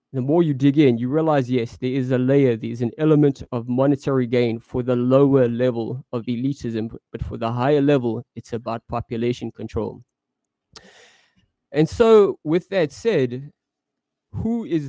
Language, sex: English, male